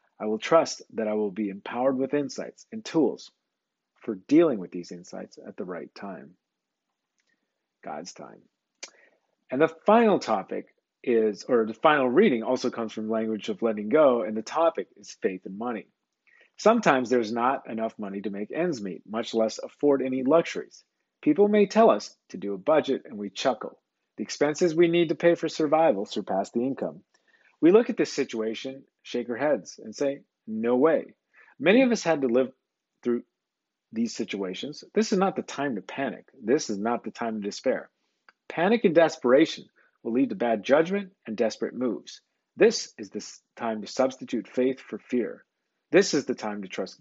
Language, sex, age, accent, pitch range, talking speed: English, male, 40-59, American, 110-160 Hz, 185 wpm